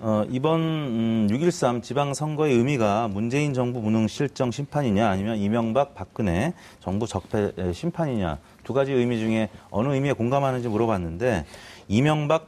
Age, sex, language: 30-49, male, Korean